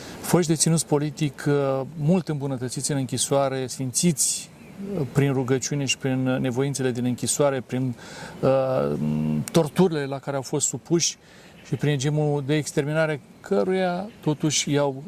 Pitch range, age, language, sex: 130-155 Hz, 40-59, Romanian, male